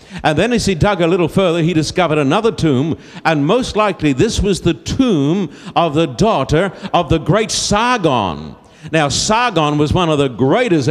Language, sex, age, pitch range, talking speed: English, male, 60-79, 145-200 Hz, 180 wpm